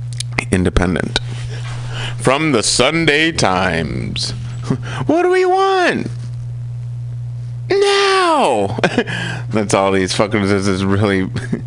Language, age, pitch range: English, 30-49, 95-120 Hz